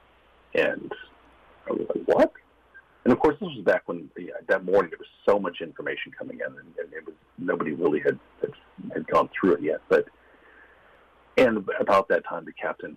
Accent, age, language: American, 40-59, English